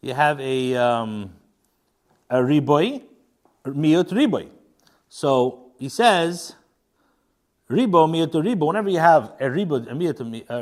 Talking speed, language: 140 wpm, English